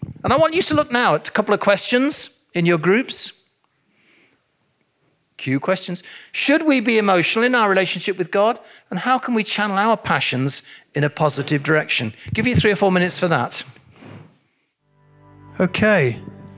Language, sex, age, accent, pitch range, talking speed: English, male, 40-59, British, 135-185 Hz, 170 wpm